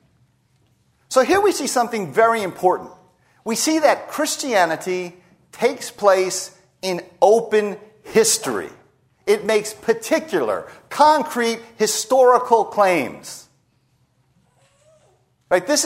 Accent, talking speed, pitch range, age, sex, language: American, 85 wpm, 175-255 Hz, 40-59, male, English